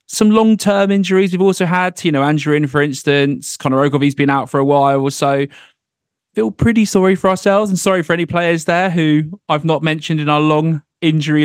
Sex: male